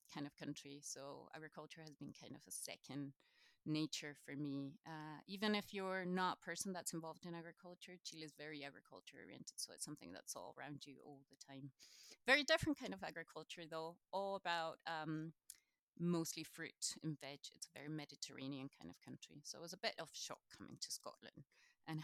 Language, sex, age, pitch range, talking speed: English, female, 30-49, 145-180 Hz, 195 wpm